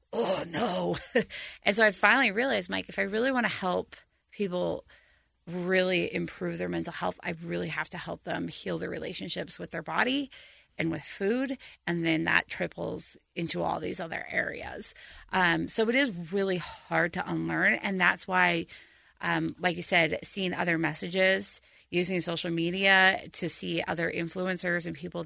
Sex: female